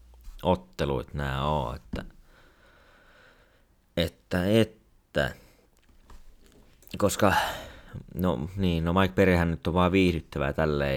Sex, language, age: male, Finnish, 30-49